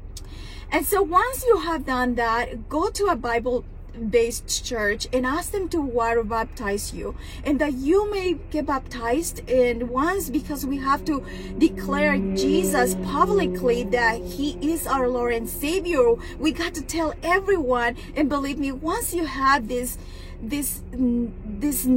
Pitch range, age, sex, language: 245-315 Hz, 30-49, female, English